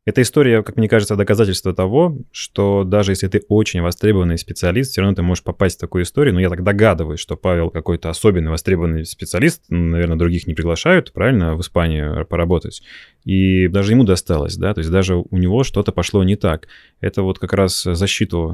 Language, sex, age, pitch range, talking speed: Russian, male, 20-39, 90-110 Hz, 190 wpm